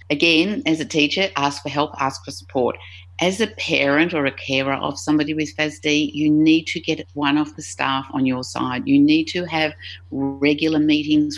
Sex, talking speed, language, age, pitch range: female, 195 wpm, English, 50-69, 120-150 Hz